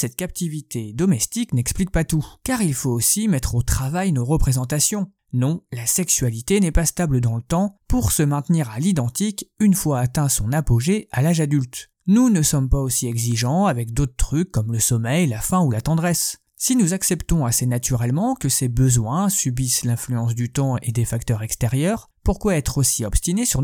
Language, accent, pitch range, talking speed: French, French, 125-180 Hz, 190 wpm